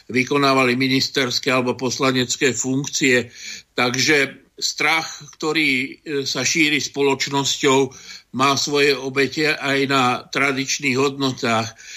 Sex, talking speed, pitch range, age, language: male, 90 wpm, 130-150 Hz, 60-79, Slovak